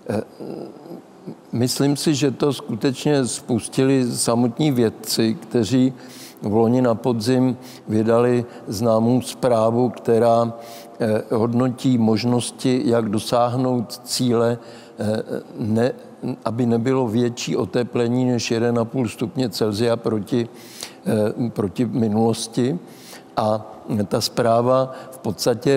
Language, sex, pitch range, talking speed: Czech, male, 115-125 Hz, 90 wpm